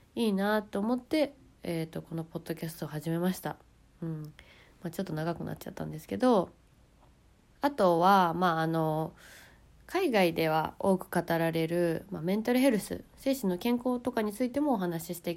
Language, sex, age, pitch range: Japanese, female, 20-39, 165-220 Hz